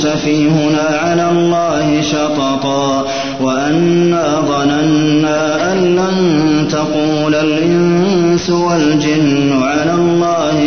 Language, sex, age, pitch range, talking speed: Arabic, male, 30-49, 145-170 Hz, 75 wpm